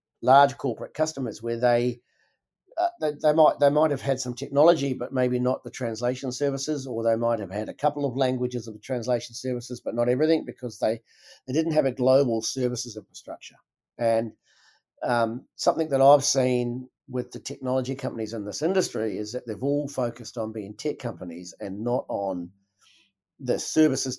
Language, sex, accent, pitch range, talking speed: English, male, Australian, 120-145 Hz, 180 wpm